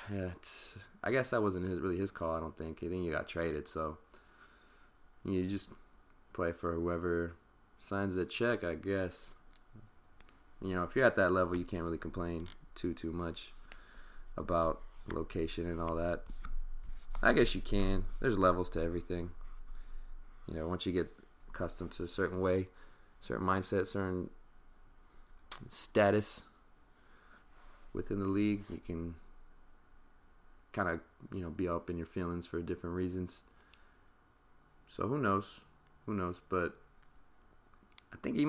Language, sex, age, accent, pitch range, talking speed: English, male, 20-39, American, 80-95 Hz, 145 wpm